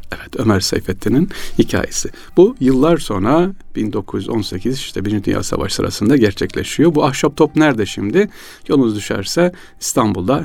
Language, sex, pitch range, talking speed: Turkish, male, 100-130 Hz, 125 wpm